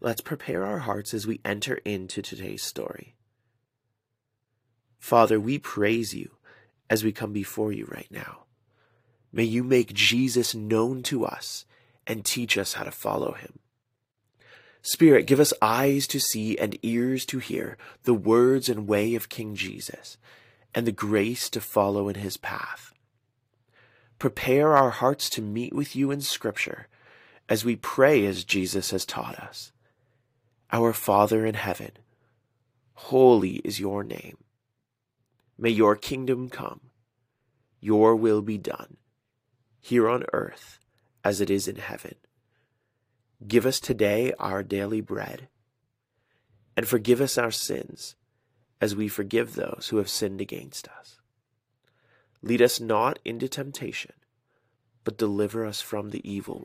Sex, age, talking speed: male, 30-49, 140 wpm